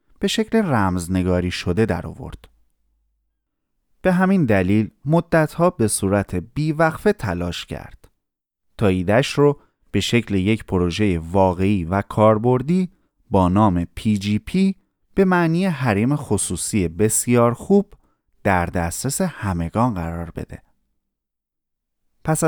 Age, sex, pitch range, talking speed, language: 30-49, male, 95-145 Hz, 105 wpm, Persian